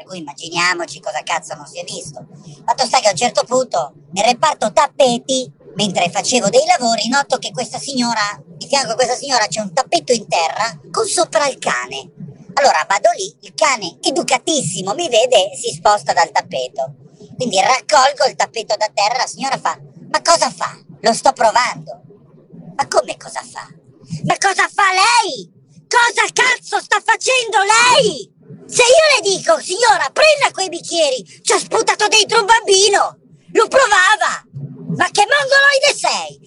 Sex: male